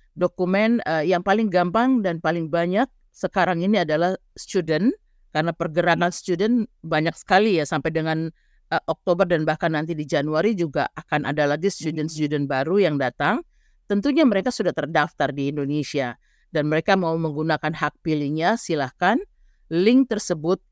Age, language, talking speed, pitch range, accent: 50-69, Indonesian, 145 wpm, 150-190 Hz, native